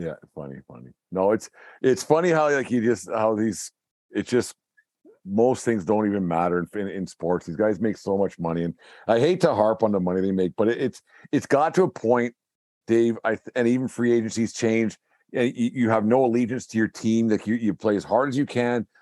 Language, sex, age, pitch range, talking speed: English, male, 50-69, 100-120 Hz, 225 wpm